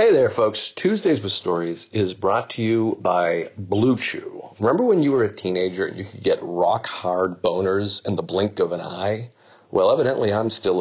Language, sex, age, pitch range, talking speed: English, male, 40-59, 105-165 Hz, 195 wpm